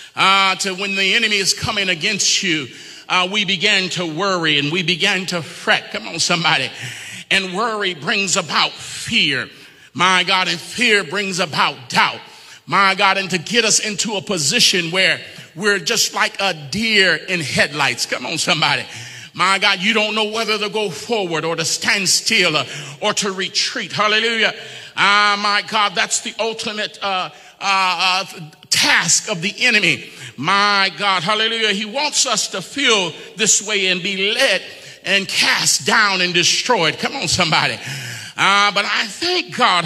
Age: 40-59